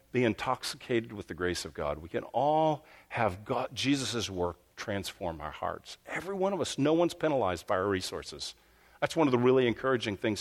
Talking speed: 190 wpm